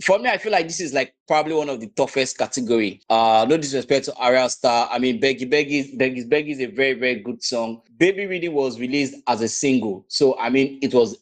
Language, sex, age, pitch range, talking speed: English, male, 20-39, 125-155 Hz, 235 wpm